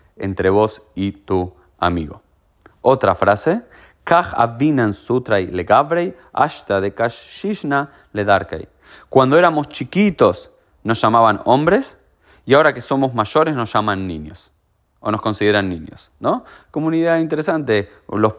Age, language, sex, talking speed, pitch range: 30-49, Spanish, male, 100 wpm, 95-125 Hz